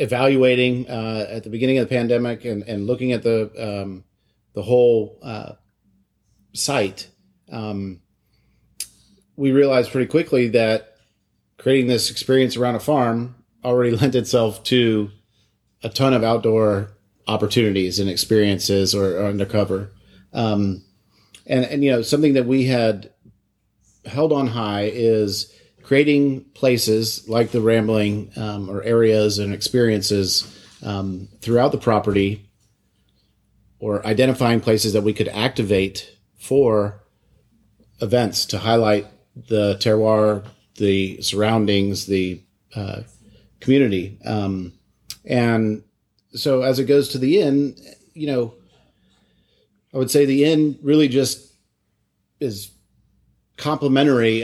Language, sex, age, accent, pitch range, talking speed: English, male, 40-59, American, 100-125 Hz, 120 wpm